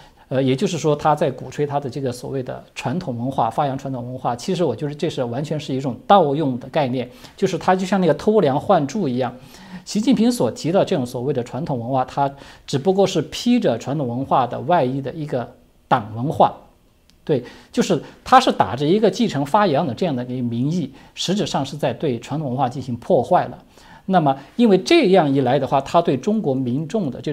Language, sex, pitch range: Chinese, male, 125-180 Hz